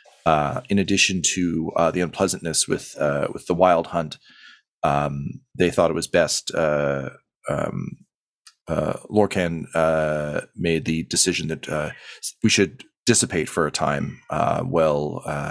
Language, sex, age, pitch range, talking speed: English, male, 30-49, 80-100 Hz, 145 wpm